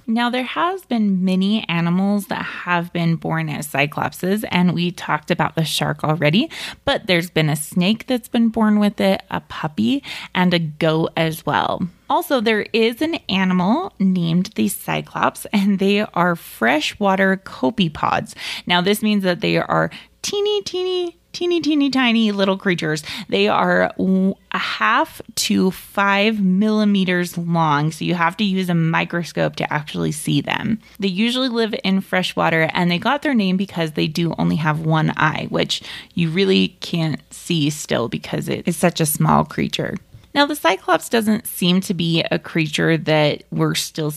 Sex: female